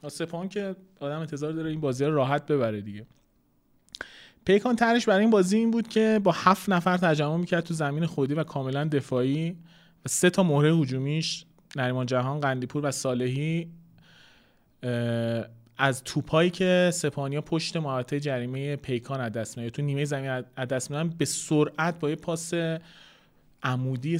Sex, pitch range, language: male, 135-180 Hz, Persian